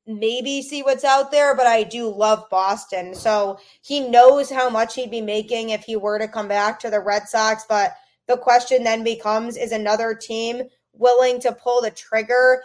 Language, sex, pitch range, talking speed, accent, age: English, female, 210-250 Hz, 195 wpm, American, 20-39